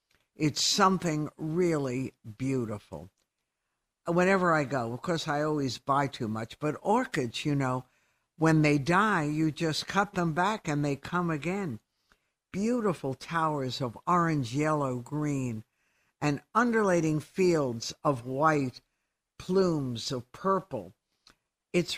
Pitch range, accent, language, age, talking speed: 130-170 Hz, American, English, 60-79, 125 wpm